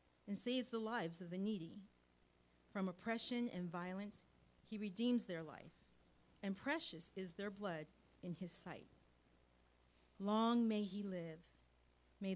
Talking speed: 135 wpm